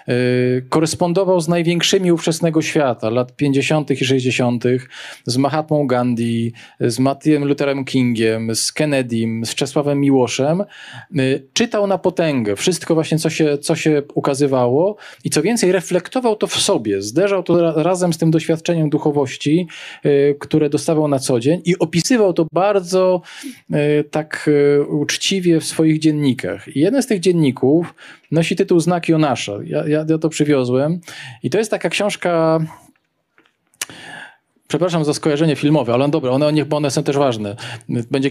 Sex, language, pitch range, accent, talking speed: male, Polish, 130-165 Hz, native, 150 wpm